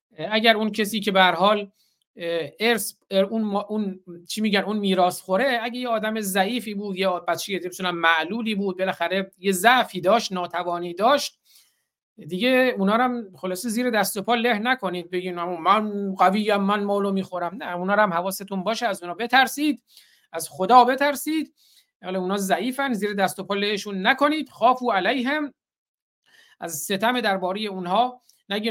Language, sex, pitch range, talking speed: Persian, male, 170-225 Hz, 160 wpm